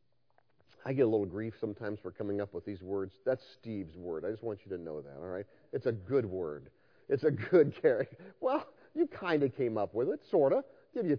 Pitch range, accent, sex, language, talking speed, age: 125-205 Hz, American, male, English, 235 wpm, 50-69